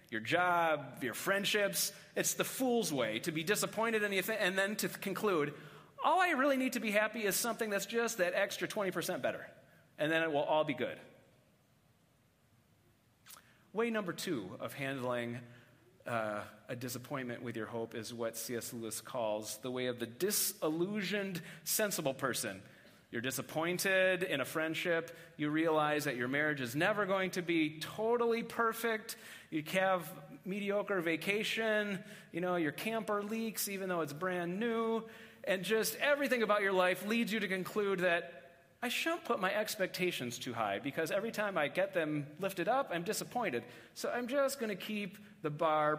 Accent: American